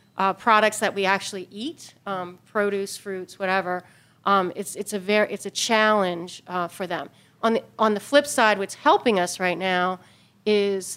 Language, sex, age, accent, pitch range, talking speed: English, female, 40-59, American, 190-220 Hz, 180 wpm